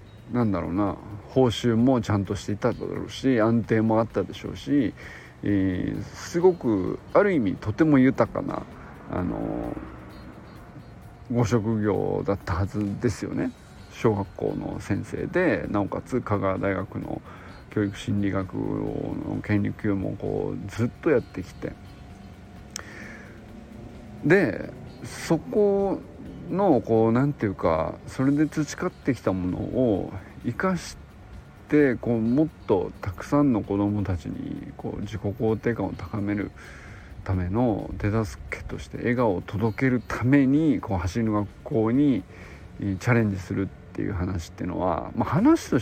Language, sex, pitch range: Japanese, male, 95-130 Hz